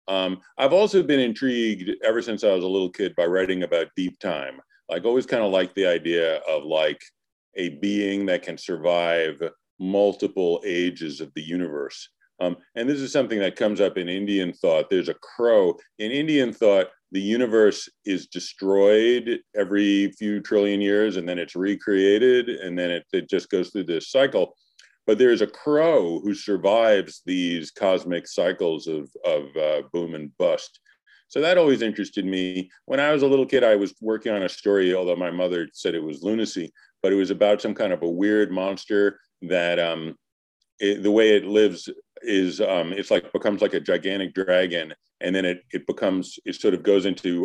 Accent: American